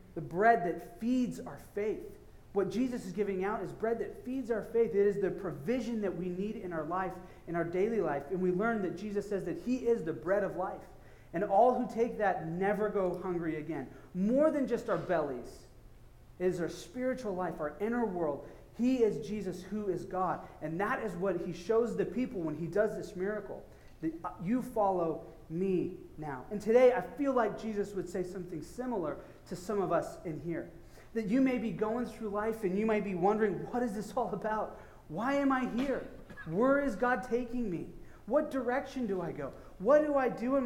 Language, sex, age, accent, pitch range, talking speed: English, male, 30-49, American, 180-240 Hz, 210 wpm